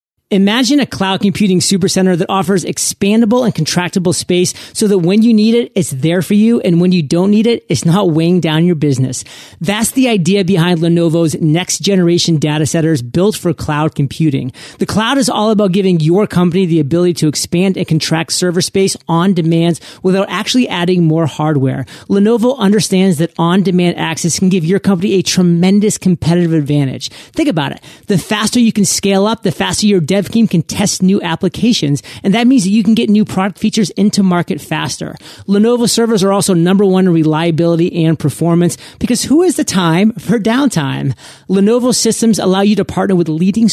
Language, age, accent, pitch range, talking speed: English, 30-49, American, 165-200 Hz, 190 wpm